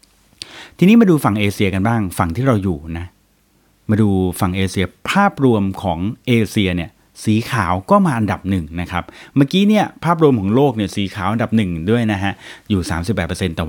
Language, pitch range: Thai, 95-130 Hz